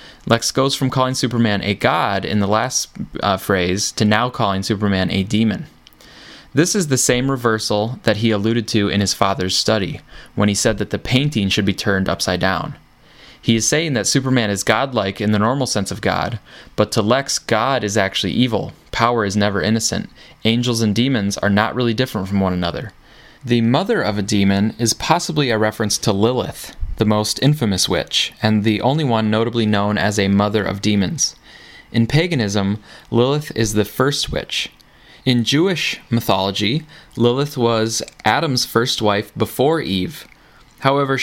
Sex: male